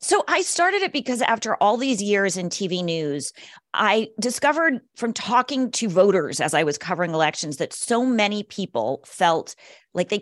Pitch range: 165-230 Hz